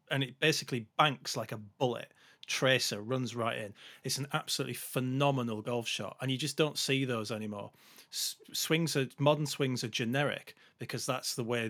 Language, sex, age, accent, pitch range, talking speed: English, male, 40-59, British, 115-135 Hz, 175 wpm